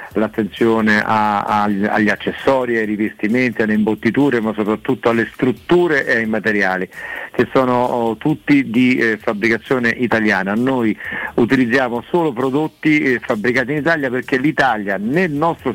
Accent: native